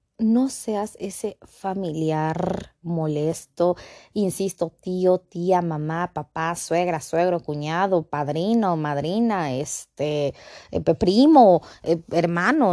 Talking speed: 85 wpm